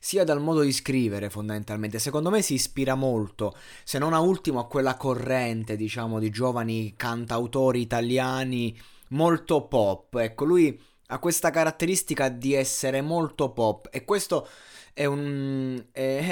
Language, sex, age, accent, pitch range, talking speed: Italian, male, 20-39, native, 125-160 Hz, 145 wpm